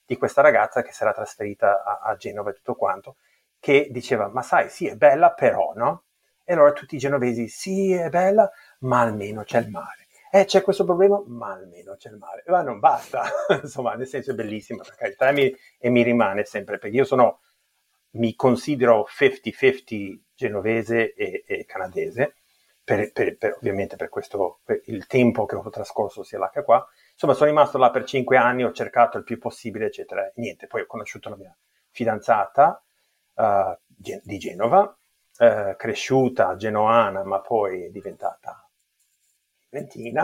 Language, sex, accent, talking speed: Italian, male, native, 175 wpm